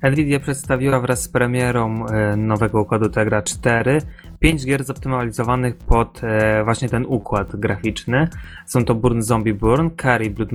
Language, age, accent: Polish, 20-39, native